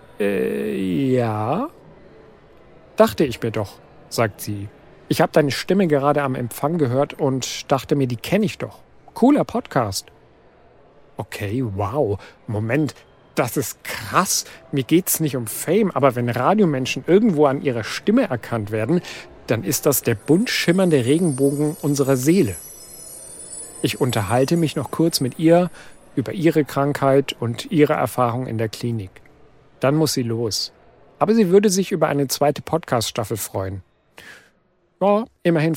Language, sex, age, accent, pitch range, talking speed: German, male, 50-69, German, 120-160 Hz, 140 wpm